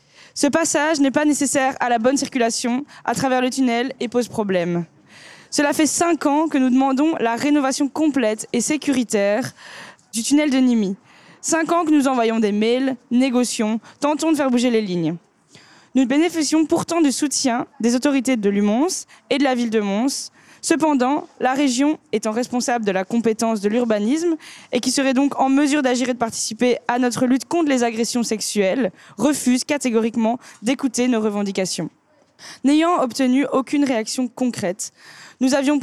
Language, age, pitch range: French, 20-39, 225-280 Hz